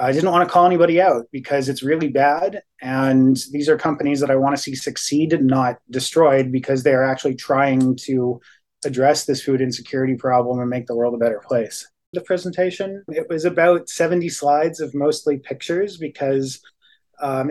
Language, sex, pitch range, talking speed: English, male, 135-155 Hz, 180 wpm